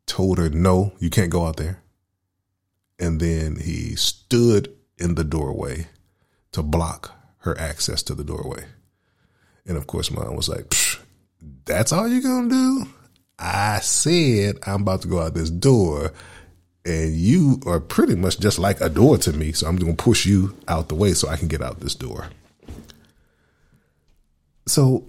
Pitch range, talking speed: 80-115 Hz, 170 wpm